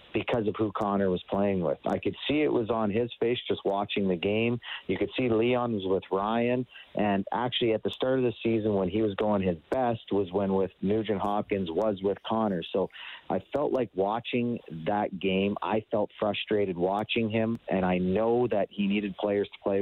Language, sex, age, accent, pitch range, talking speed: English, male, 40-59, American, 95-120 Hz, 210 wpm